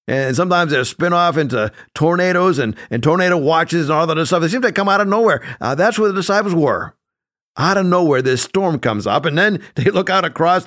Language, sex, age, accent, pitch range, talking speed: English, male, 50-69, American, 130-195 Hz, 230 wpm